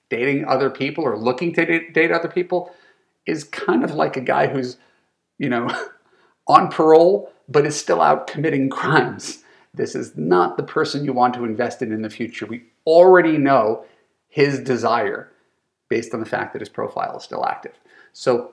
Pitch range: 140-220 Hz